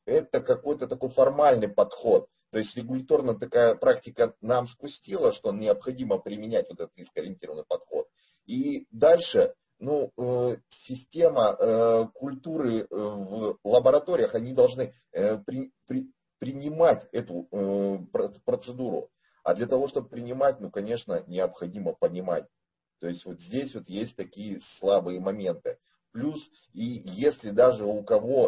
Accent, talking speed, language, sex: native, 115 wpm, Russian, male